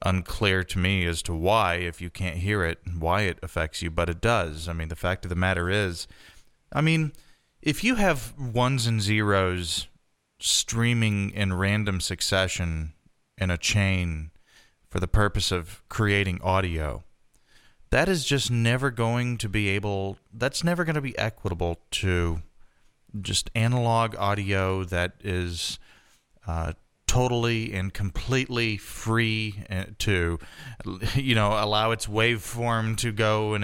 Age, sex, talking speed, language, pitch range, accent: 30-49, male, 145 wpm, English, 90-115 Hz, American